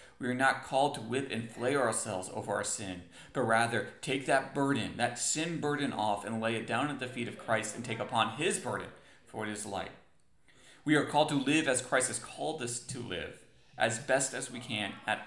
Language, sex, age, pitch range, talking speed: English, male, 30-49, 110-135 Hz, 225 wpm